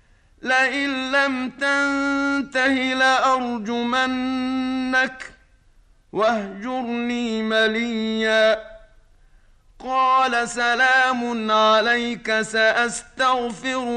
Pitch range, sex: 230-260 Hz, male